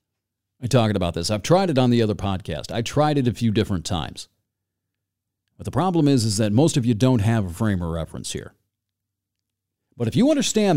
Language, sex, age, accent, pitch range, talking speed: English, male, 40-59, American, 100-135 Hz, 210 wpm